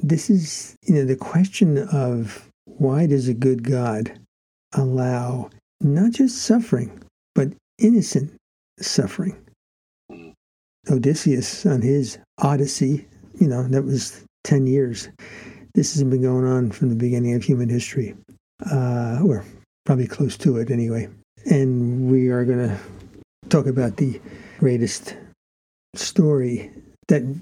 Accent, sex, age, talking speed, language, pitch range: American, male, 60-79, 125 wpm, English, 120-150 Hz